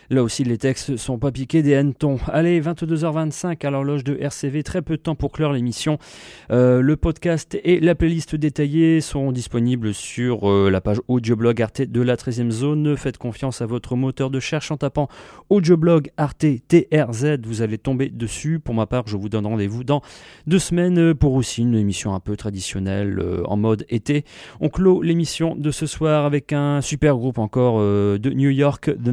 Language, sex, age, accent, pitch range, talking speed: English, male, 30-49, French, 115-155 Hz, 195 wpm